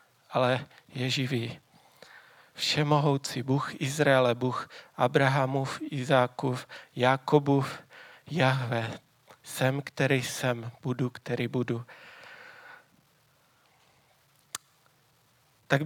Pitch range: 130-150 Hz